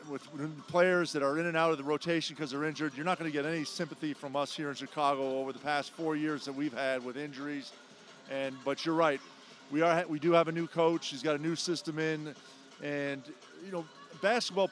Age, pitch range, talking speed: 40-59, 145-165 Hz, 230 wpm